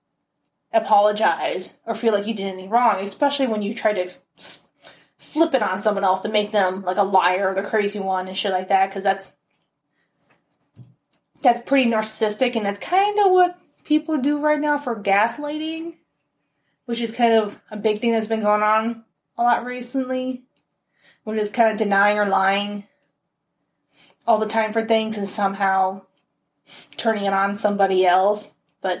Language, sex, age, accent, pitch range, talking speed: English, female, 20-39, American, 195-240 Hz, 170 wpm